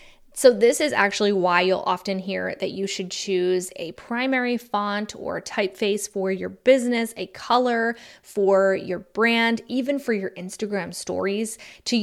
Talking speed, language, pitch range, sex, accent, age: 155 wpm, English, 185-230 Hz, female, American, 20-39